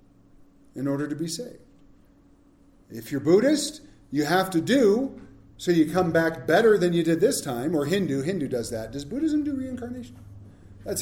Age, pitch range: 40-59, 115-185 Hz